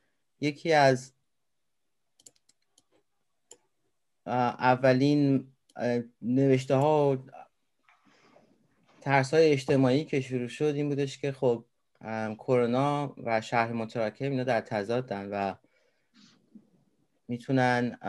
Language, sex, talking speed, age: Persian, male, 85 wpm, 30-49